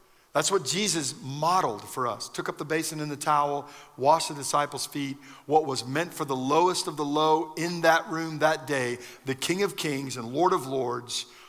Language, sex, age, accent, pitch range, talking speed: English, male, 50-69, American, 135-165 Hz, 205 wpm